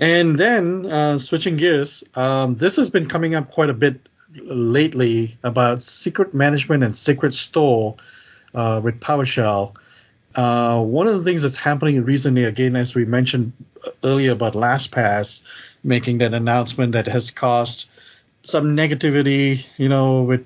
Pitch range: 120-145 Hz